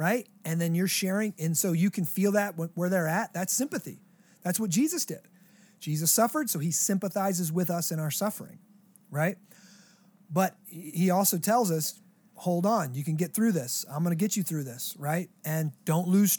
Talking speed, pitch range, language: 200 wpm, 170-205 Hz, English